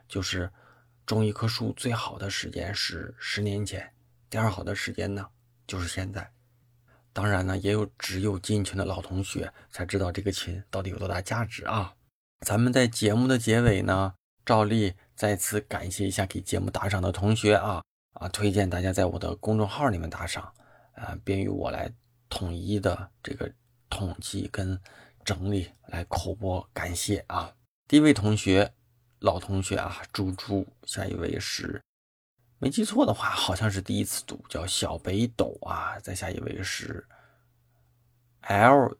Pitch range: 95-115 Hz